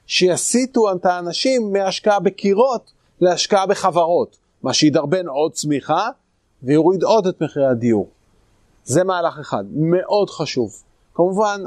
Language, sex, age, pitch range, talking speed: Hebrew, male, 30-49, 150-200 Hz, 115 wpm